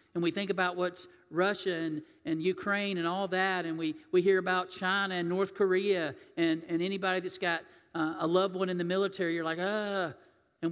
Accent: American